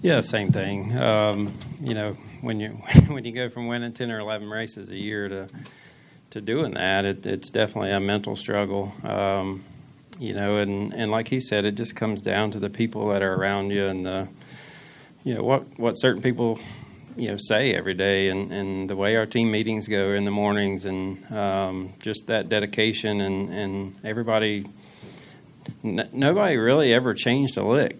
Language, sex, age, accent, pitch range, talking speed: English, male, 40-59, American, 100-115 Hz, 185 wpm